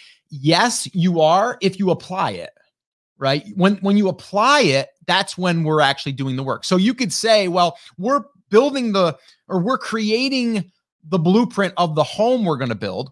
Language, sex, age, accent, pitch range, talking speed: English, male, 30-49, American, 155-210 Hz, 185 wpm